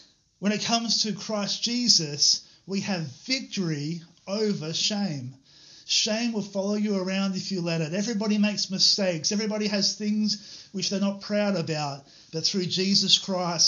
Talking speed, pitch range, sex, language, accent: 155 wpm, 170-205 Hz, male, English, Australian